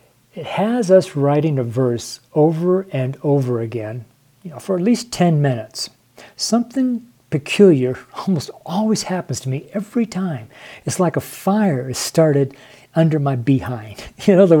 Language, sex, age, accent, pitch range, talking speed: English, male, 50-69, American, 130-175 Hz, 160 wpm